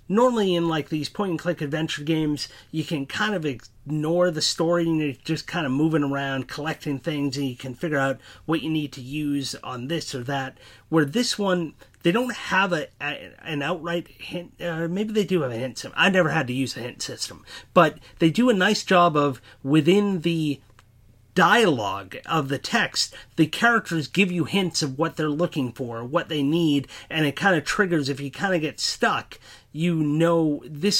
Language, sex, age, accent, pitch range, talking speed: English, male, 30-49, American, 140-175 Hz, 200 wpm